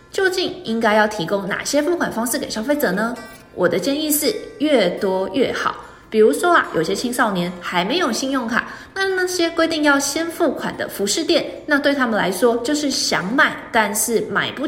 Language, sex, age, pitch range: Chinese, female, 20-39, 220-315 Hz